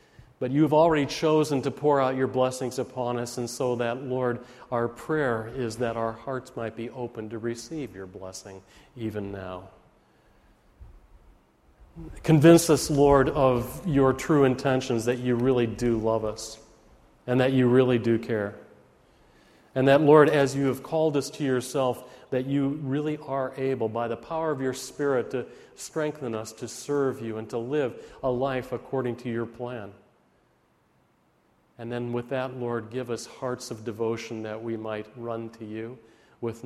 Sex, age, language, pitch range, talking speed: male, 40-59, English, 115-135 Hz, 165 wpm